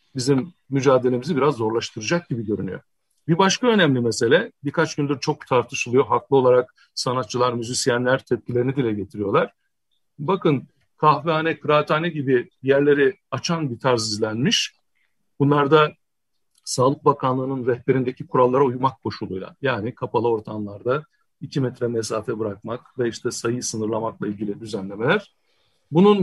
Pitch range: 125-165 Hz